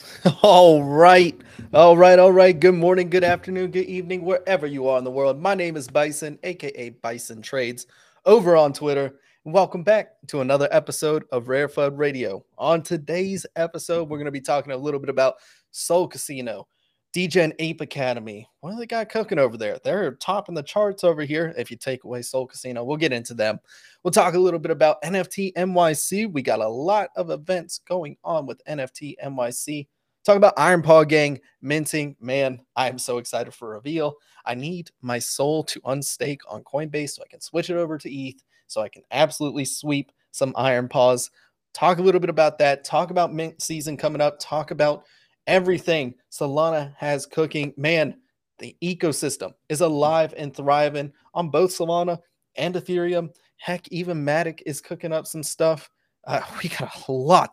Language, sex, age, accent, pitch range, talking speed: English, male, 20-39, American, 140-180 Hz, 190 wpm